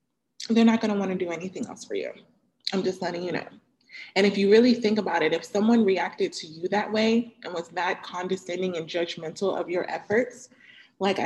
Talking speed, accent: 205 wpm, American